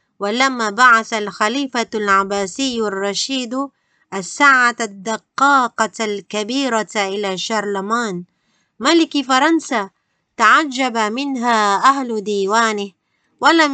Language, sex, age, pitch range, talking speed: Malay, female, 20-39, 210-270 Hz, 75 wpm